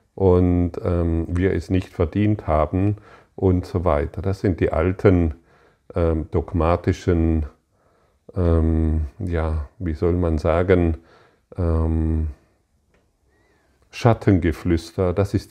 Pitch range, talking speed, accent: 80-95 Hz, 100 wpm, German